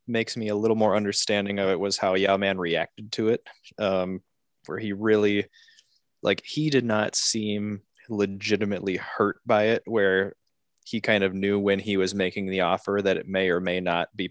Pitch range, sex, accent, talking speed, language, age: 95-105 Hz, male, American, 195 wpm, English, 20-39